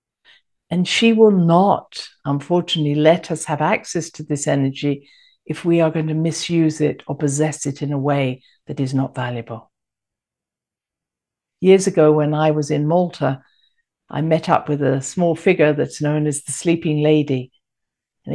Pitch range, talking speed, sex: 140-170 Hz, 165 wpm, female